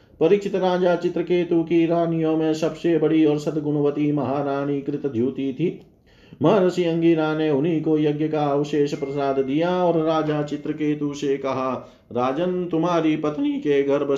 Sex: male